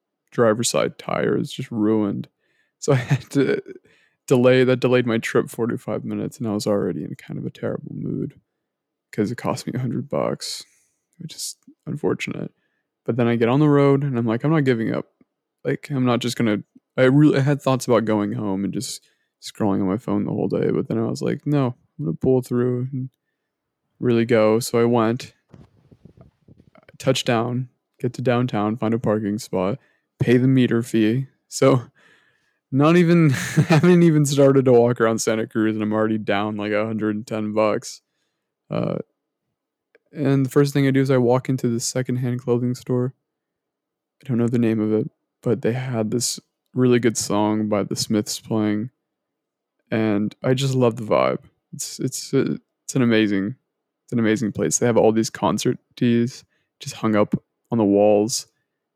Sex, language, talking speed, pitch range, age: male, English, 185 wpm, 110-135 Hz, 20-39